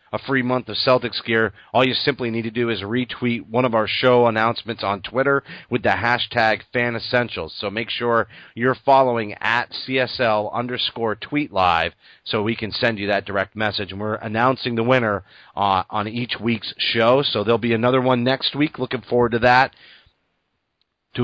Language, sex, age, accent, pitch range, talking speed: English, male, 30-49, American, 105-130 Hz, 185 wpm